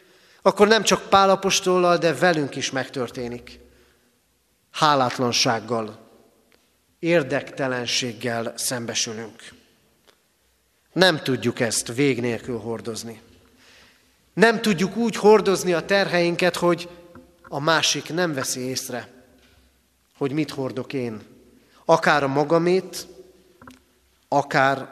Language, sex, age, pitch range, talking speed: Hungarian, male, 40-59, 115-175 Hz, 90 wpm